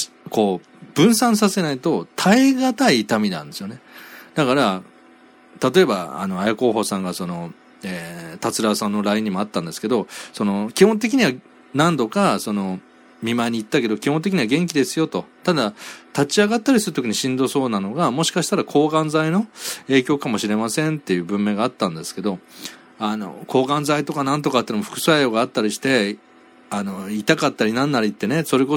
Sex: male